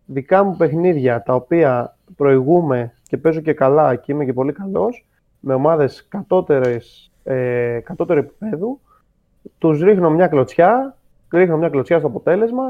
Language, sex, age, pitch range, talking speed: Greek, male, 30-49, 125-175 Hz, 140 wpm